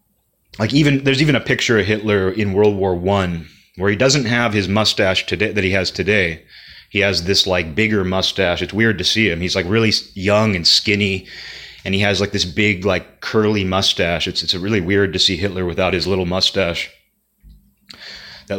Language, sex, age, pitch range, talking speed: English, male, 30-49, 90-110 Hz, 195 wpm